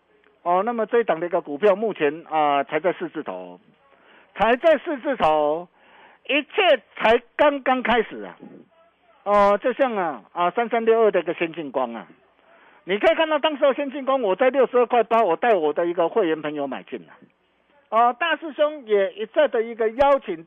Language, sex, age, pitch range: Chinese, male, 50-69, 185-285 Hz